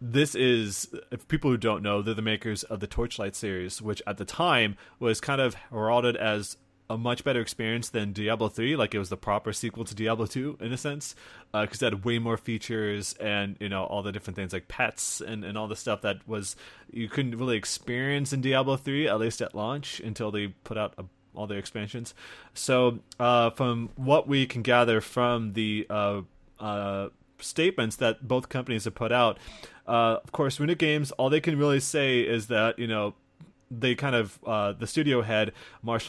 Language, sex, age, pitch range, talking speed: English, male, 20-39, 105-125 Hz, 205 wpm